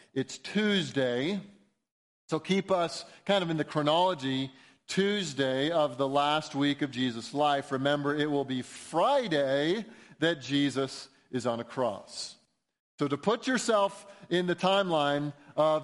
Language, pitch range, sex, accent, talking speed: English, 140-185 Hz, male, American, 140 wpm